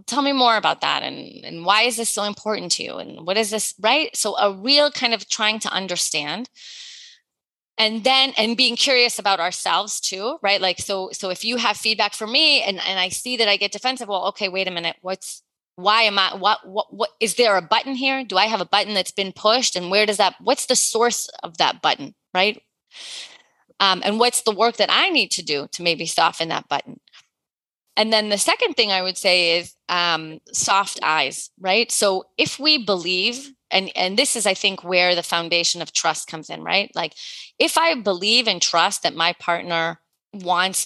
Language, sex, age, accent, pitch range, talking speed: English, female, 20-39, American, 180-230 Hz, 215 wpm